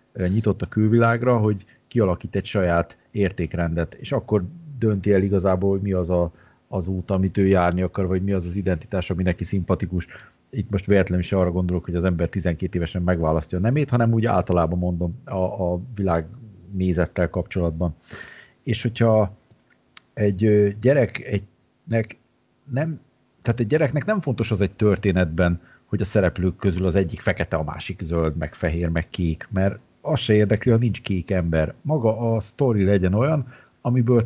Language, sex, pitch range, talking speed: Hungarian, male, 90-110 Hz, 165 wpm